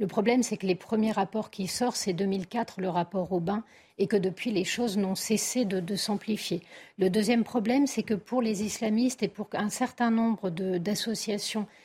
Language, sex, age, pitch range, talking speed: French, female, 50-69, 190-235 Hz, 200 wpm